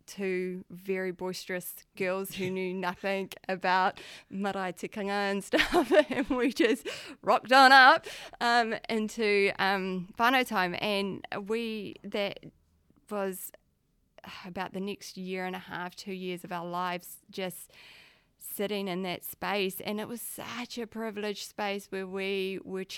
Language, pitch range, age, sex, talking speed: English, 175-200 Hz, 20-39, female, 145 wpm